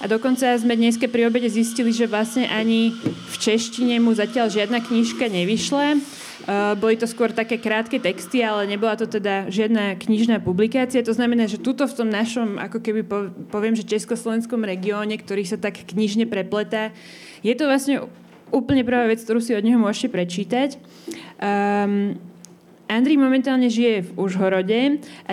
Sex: female